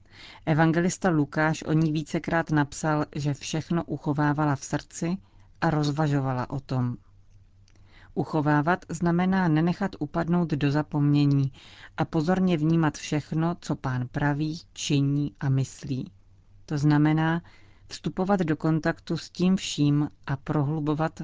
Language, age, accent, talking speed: Czech, 40-59, native, 115 wpm